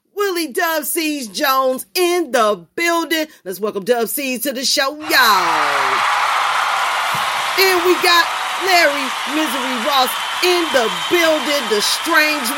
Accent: American